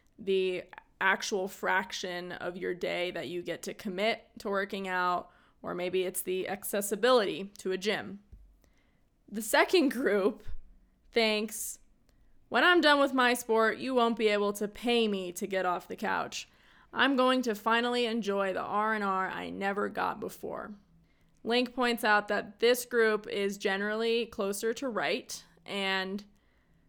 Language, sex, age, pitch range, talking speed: English, female, 20-39, 190-225 Hz, 155 wpm